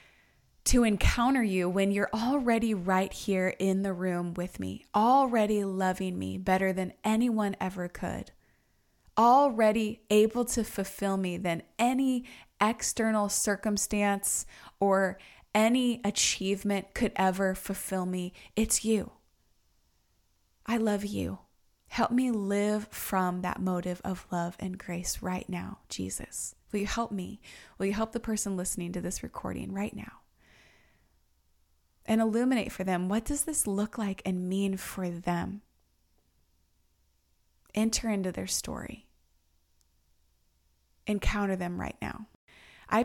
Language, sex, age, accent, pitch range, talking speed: English, female, 20-39, American, 175-215 Hz, 130 wpm